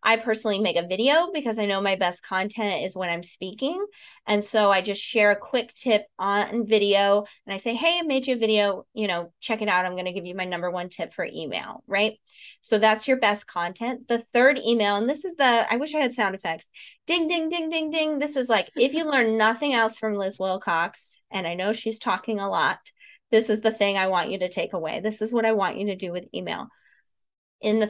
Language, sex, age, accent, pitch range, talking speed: English, female, 20-39, American, 200-250 Hz, 245 wpm